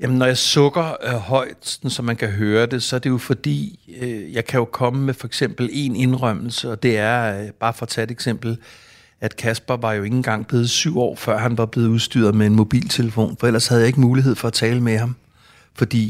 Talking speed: 240 wpm